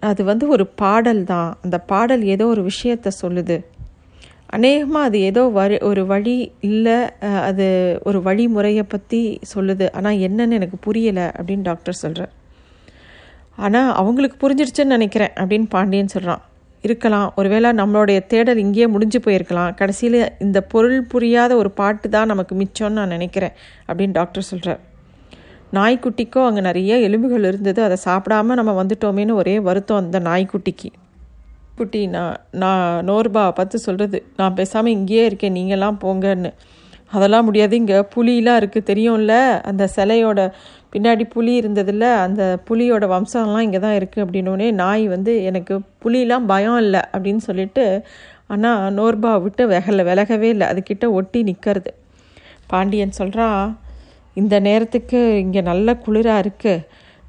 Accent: native